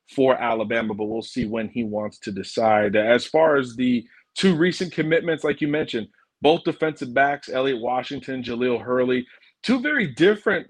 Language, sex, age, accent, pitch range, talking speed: English, male, 30-49, American, 120-140 Hz, 170 wpm